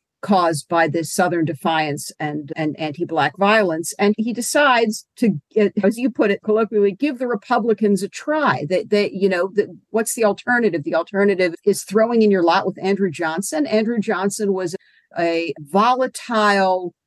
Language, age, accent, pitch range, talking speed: English, 50-69, American, 175-225 Hz, 170 wpm